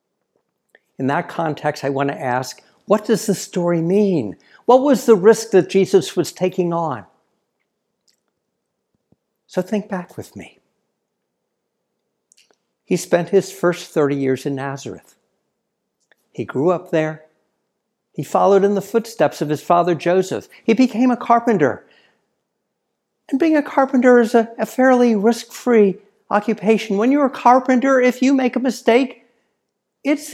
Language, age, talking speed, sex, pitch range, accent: English, 60-79, 140 wpm, male, 165-230 Hz, American